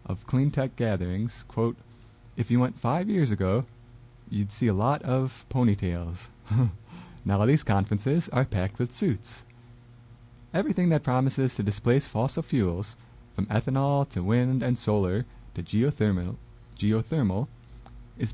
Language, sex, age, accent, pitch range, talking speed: English, male, 30-49, American, 105-130 Hz, 135 wpm